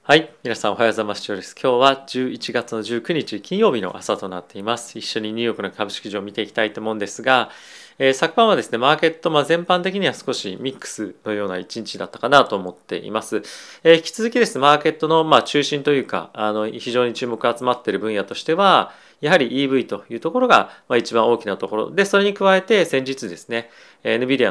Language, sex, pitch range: Japanese, male, 110-160 Hz